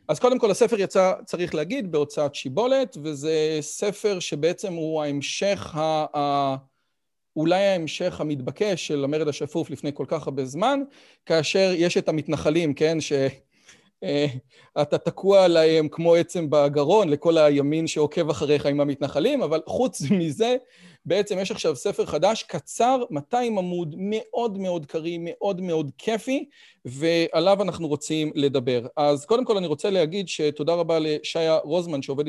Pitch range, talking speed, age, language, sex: 150-200 Hz, 140 wpm, 40-59, Hebrew, male